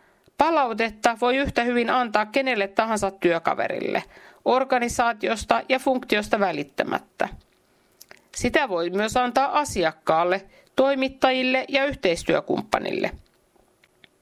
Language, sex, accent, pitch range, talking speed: Finnish, female, native, 185-255 Hz, 85 wpm